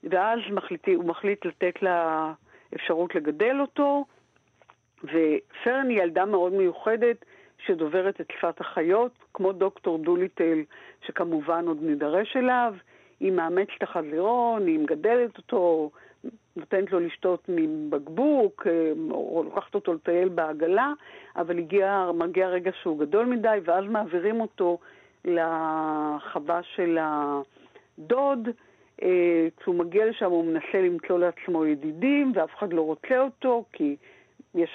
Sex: female